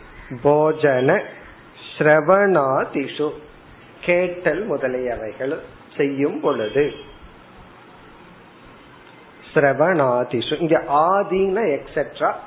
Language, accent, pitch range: Tamil, native, 135-170 Hz